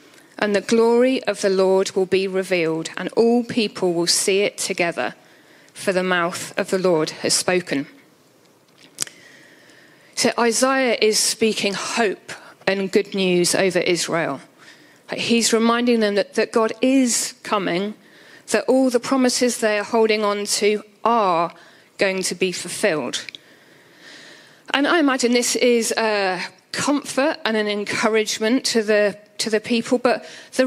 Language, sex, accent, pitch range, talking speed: English, female, British, 195-235 Hz, 140 wpm